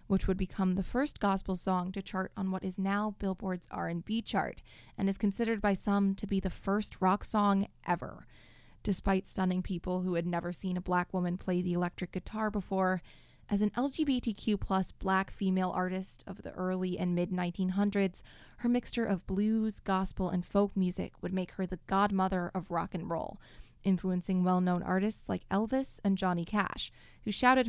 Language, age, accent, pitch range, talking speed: English, 20-39, American, 180-210 Hz, 180 wpm